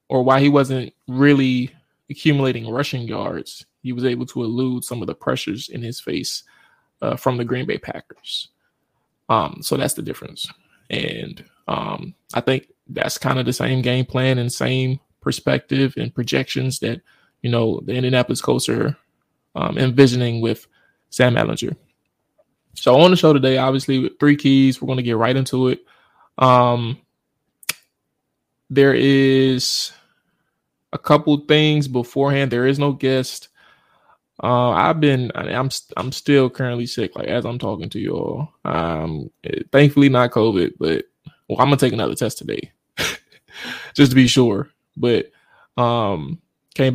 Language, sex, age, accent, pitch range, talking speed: English, male, 20-39, American, 125-140 Hz, 155 wpm